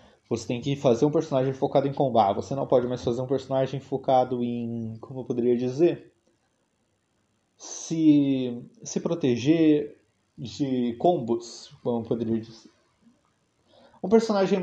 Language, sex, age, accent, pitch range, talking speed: Portuguese, male, 20-39, Brazilian, 115-150 Hz, 135 wpm